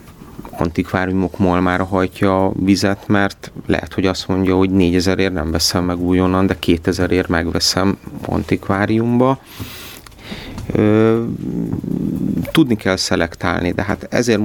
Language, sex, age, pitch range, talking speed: Hungarian, male, 30-49, 90-105 Hz, 110 wpm